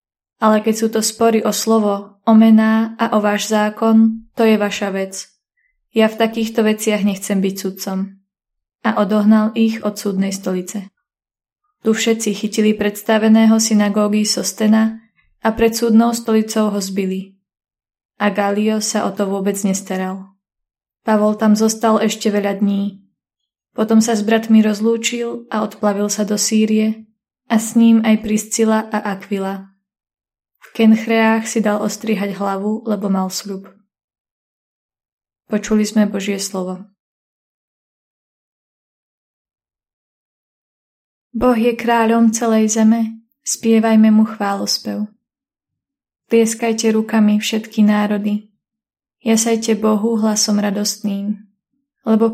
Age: 20-39